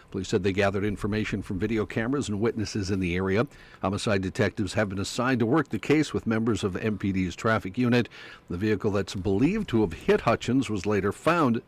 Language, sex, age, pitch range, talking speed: English, male, 60-79, 100-125 Hz, 200 wpm